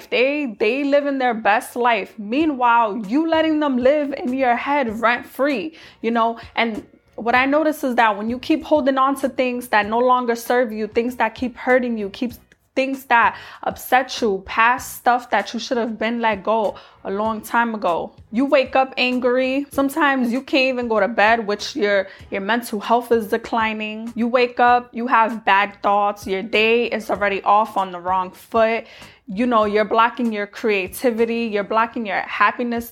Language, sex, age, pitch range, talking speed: English, female, 20-39, 210-255 Hz, 190 wpm